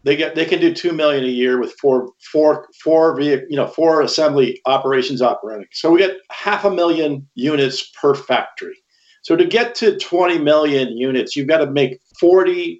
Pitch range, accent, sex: 150-245 Hz, American, male